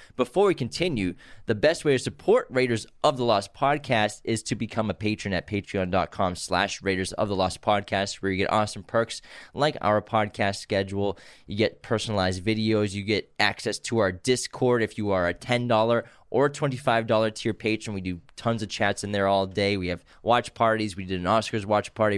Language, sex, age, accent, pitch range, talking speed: English, male, 20-39, American, 100-120 Hz, 200 wpm